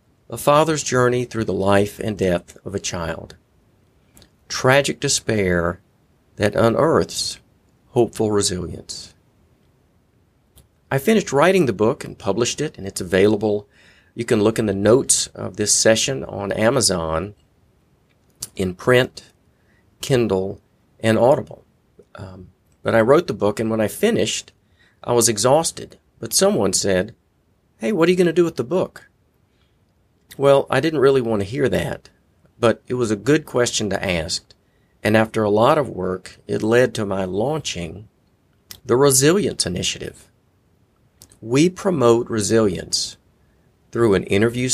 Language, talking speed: English, 140 wpm